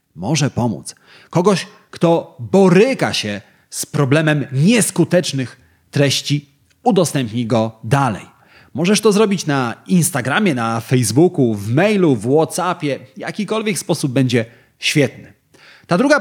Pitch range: 120-170 Hz